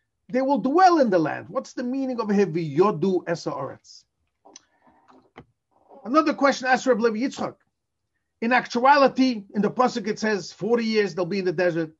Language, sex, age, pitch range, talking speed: English, male, 40-59, 140-200 Hz, 155 wpm